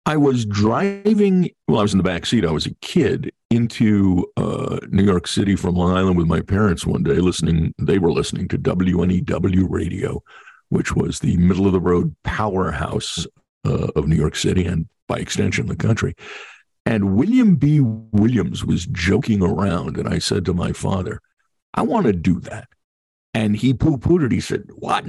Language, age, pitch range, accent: English, 50-69, 95-125 Hz, American